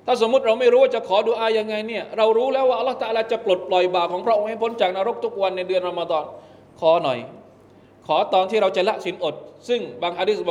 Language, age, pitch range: Thai, 20-39, 160-220 Hz